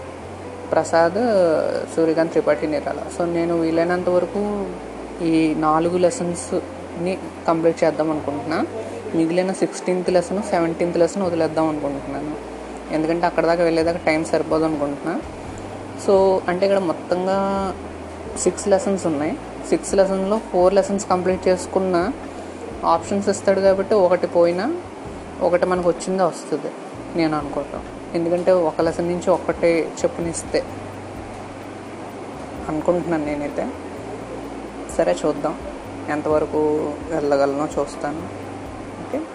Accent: native